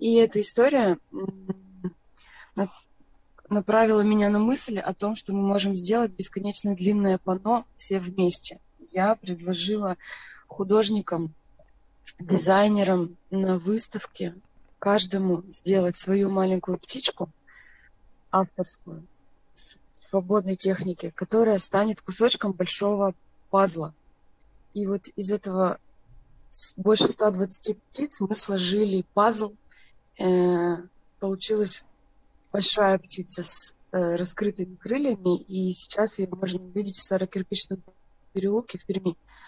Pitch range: 180-205 Hz